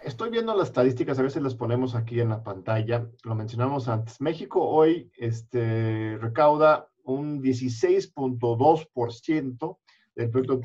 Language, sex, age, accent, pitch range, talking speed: Spanish, male, 50-69, Mexican, 115-150 Hz, 125 wpm